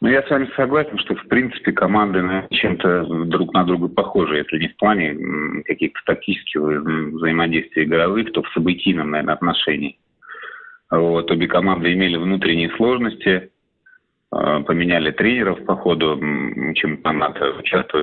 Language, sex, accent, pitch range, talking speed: Russian, male, native, 90-115 Hz, 125 wpm